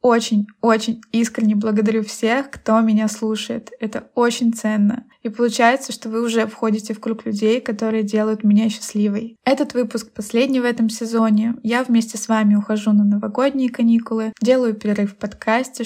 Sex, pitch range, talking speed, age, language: female, 215-240 Hz, 155 wpm, 20-39, Russian